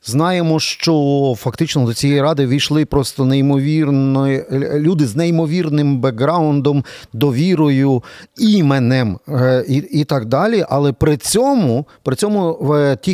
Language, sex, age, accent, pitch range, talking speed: Ukrainian, male, 40-59, native, 125-150 Hz, 110 wpm